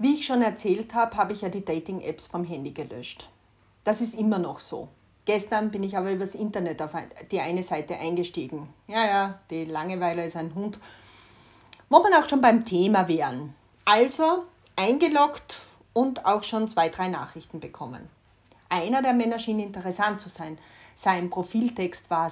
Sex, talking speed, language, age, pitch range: female, 170 wpm, German, 30-49, 165-235 Hz